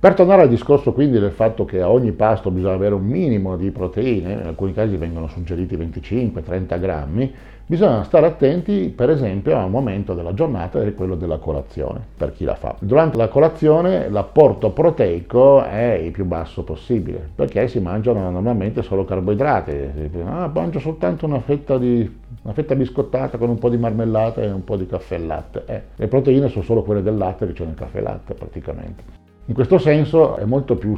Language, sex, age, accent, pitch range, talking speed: Italian, male, 50-69, native, 95-120 Hz, 195 wpm